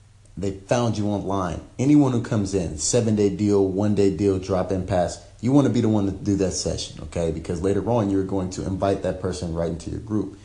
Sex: male